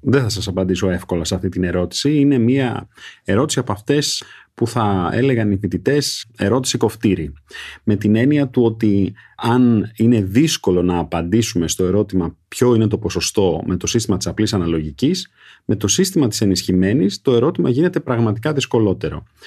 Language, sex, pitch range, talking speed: Greek, male, 90-130 Hz, 160 wpm